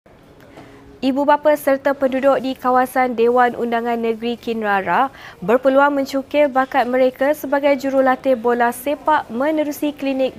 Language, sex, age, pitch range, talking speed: Malay, female, 20-39, 230-275 Hz, 115 wpm